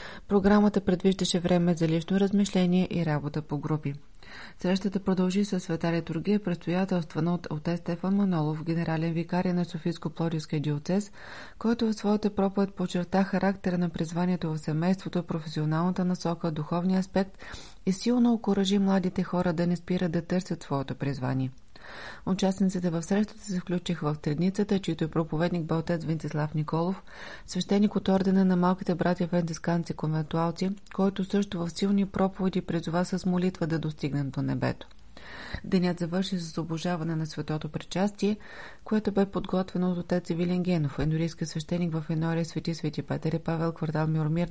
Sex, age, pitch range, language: female, 30-49, 160-190 Hz, Bulgarian